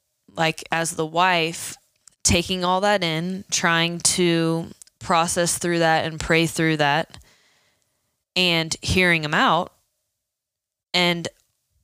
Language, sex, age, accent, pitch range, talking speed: English, female, 20-39, American, 160-180 Hz, 110 wpm